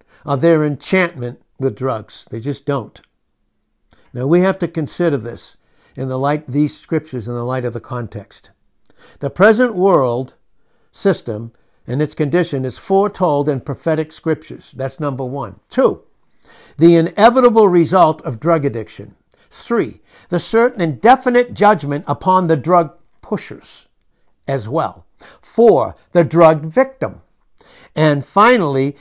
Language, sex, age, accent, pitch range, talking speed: English, male, 60-79, American, 135-185 Hz, 135 wpm